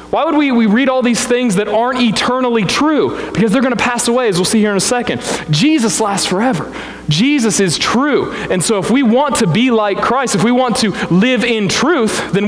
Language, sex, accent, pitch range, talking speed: English, male, American, 155-220 Hz, 230 wpm